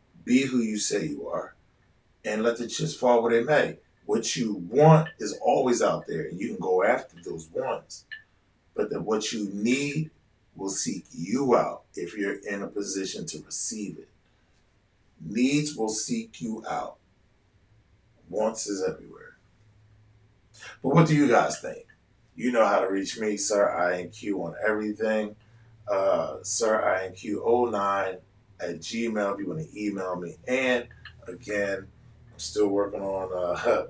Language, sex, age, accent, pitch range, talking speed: English, male, 30-49, American, 95-115 Hz, 155 wpm